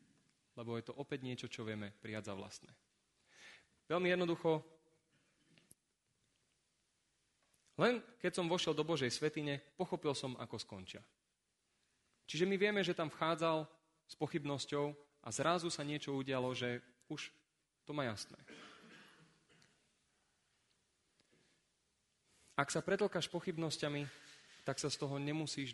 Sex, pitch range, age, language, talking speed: male, 125-160 Hz, 30-49, Slovak, 115 wpm